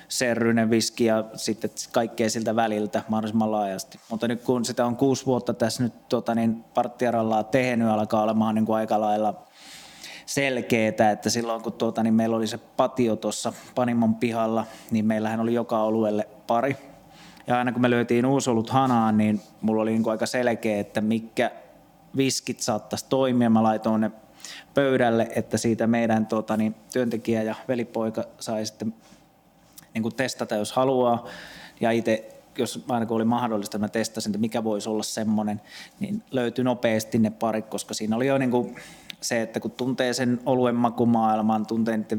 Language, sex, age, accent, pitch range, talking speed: Finnish, male, 20-39, native, 110-120 Hz, 160 wpm